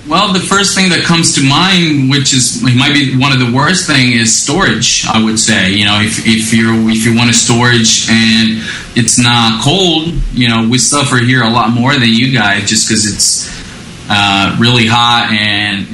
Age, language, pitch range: 20-39, English, 110-135 Hz